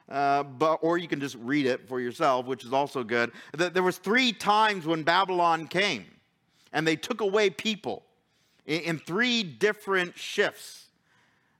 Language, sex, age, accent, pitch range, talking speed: English, male, 50-69, American, 125-175 Hz, 170 wpm